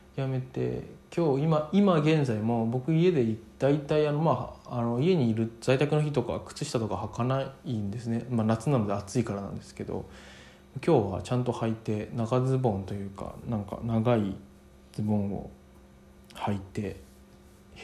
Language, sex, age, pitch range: Japanese, male, 20-39, 95-130 Hz